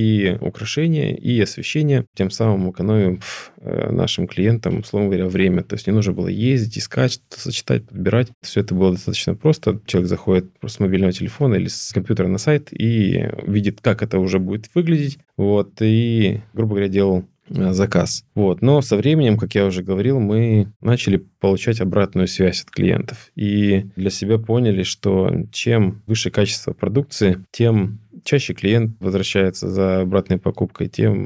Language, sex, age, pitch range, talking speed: Russian, male, 20-39, 95-115 Hz, 160 wpm